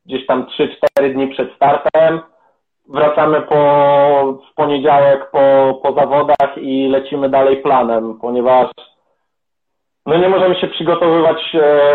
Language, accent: Polish, native